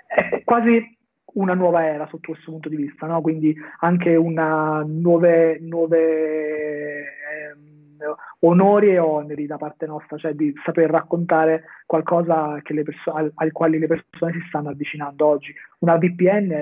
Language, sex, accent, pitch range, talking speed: Italian, male, native, 150-165 Hz, 160 wpm